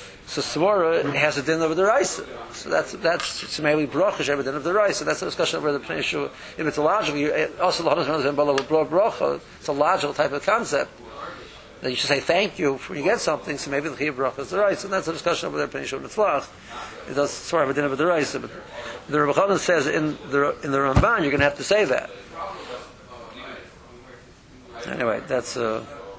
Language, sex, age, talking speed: English, male, 50-69, 195 wpm